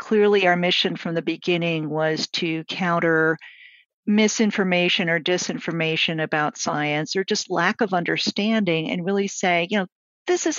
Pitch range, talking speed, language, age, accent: 170-220 Hz, 145 wpm, English, 50-69, American